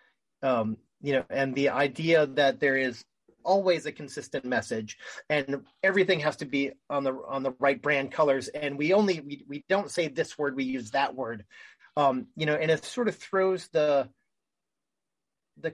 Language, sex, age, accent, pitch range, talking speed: English, male, 30-49, American, 135-185 Hz, 185 wpm